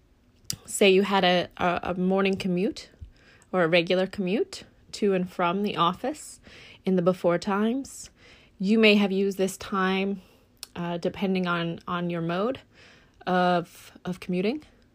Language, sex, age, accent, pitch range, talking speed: English, female, 20-39, American, 180-220 Hz, 140 wpm